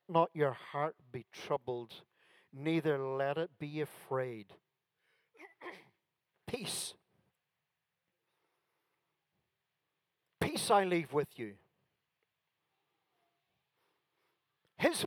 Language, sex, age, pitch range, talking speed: English, male, 50-69, 145-205 Hz, 70 wpm